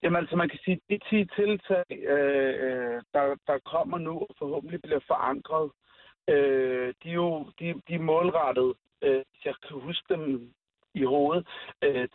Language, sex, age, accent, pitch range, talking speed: Danish, male, 60-79, native, 160-200 Hz, 165 wpm